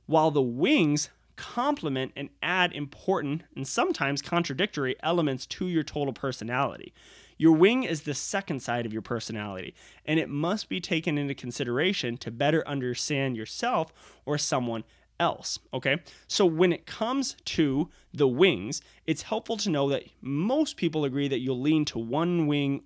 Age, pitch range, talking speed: 20-39, 130-170 Hz, 155 wpm